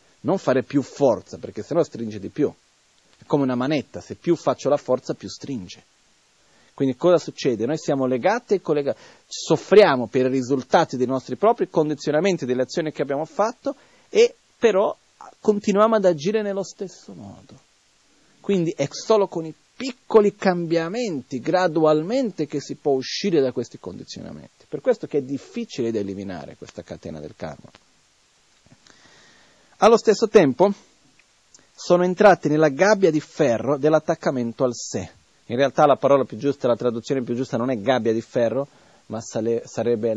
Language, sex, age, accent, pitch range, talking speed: Italian, male, 40-59, native, 125-185 Hz, 155 wpm